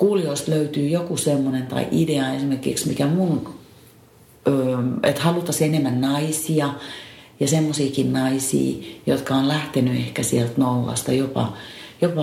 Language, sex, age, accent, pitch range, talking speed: Finnish, female, 40-59, native, 125-150 Hz, 115 wpm